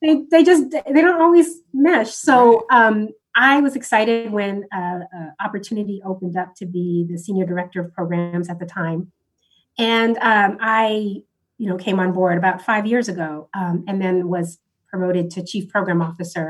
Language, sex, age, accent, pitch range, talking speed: English, female, 30-49, American, 185-245 Hz, 180 wpm